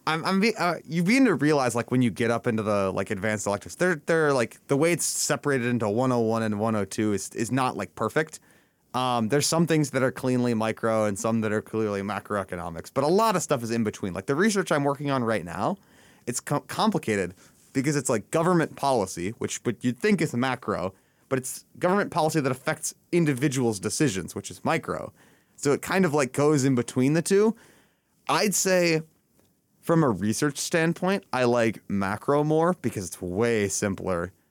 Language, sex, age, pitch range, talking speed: English, male, 30-49, 115-155 Hz, 195 wpm